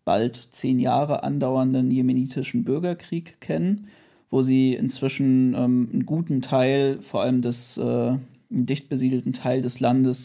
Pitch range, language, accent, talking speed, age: 130-150 Hz, German, German, 135 wpm, 40-59